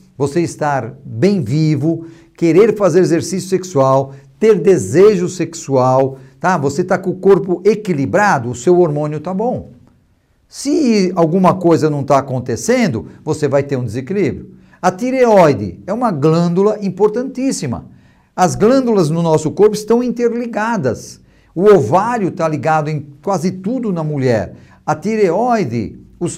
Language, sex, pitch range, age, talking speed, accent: Portuguese, male, 155-215 Hz, 50-69, 135 wpm, Brazilian